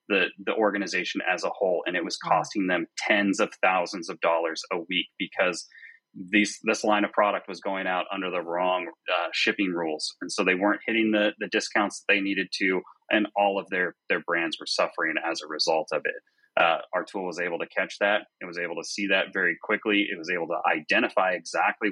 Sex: male